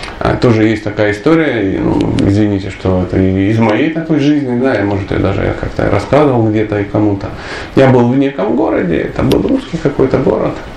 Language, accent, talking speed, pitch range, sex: Russian, native, 175 wpm, 110-175 Hz, male